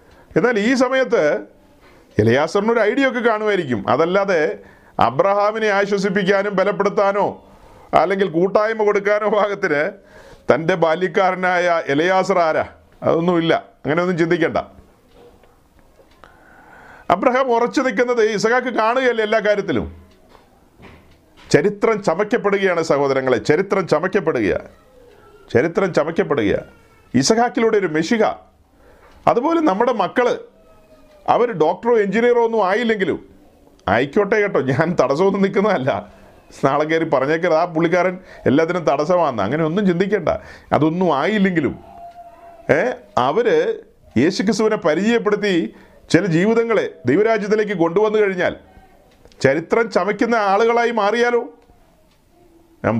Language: Malayalam